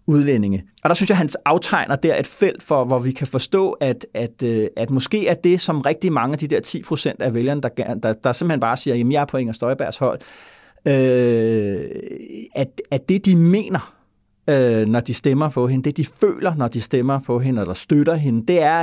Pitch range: 125-170 Hz